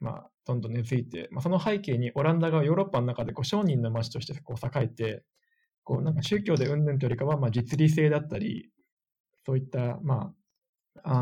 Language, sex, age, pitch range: Japanese, male, 20-39, 120-165 Hz